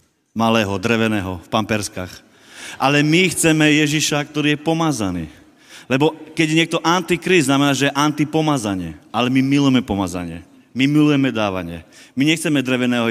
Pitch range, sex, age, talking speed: 130-160 Hz, male, 30-49, 135 wpm